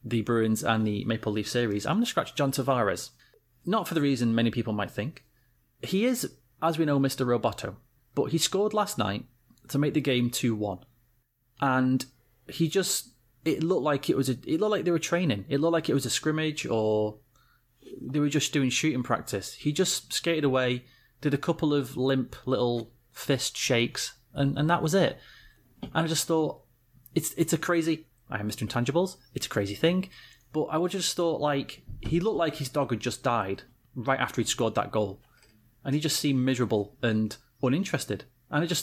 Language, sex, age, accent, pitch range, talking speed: English, male, 30-49, British, 120-160 Hz, 200 wpm